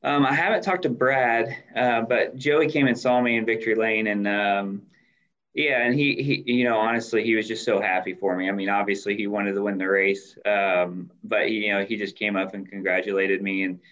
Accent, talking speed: American, 235 wpm